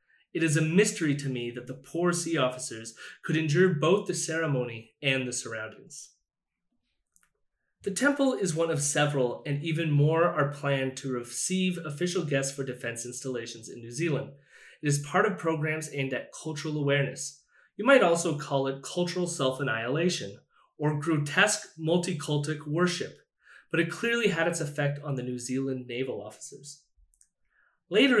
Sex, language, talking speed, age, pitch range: male, English, 155 wpm, 30-49, 130-170 Hz